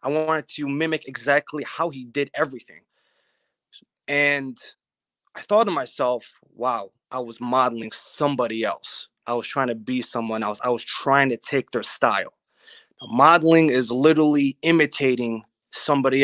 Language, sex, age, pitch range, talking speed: English, male, 20-39, 120-150 Hz, 145 wpm